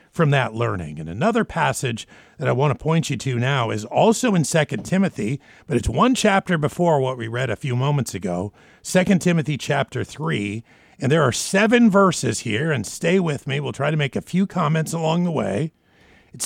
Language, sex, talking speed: English, male, 205 wpm